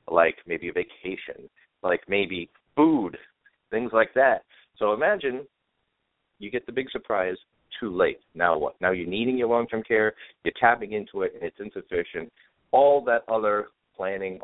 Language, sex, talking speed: English, male, 160 wpm